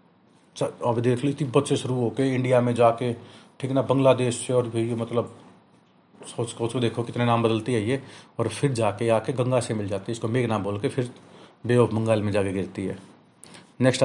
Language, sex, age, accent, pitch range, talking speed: Hindi, male, 40-59, native, 115-145 Hz, 210 wpm